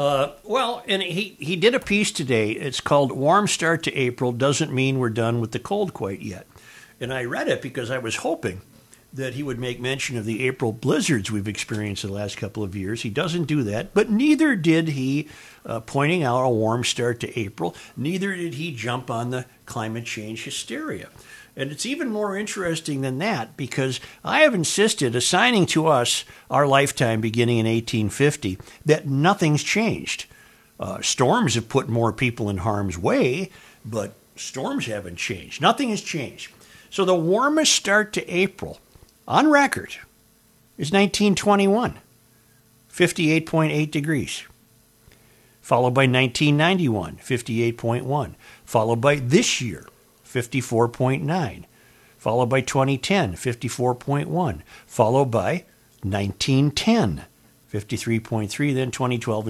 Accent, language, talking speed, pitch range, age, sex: American, English, 140 wpm, 115-170 Hz, 60-79, male